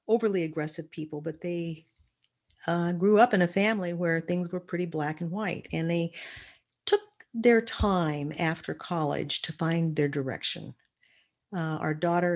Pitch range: 140-180 Hz